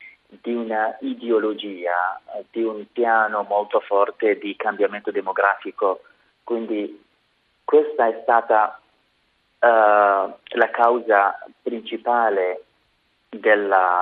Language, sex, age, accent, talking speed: Italian, male, 30-49, native, 80 wpm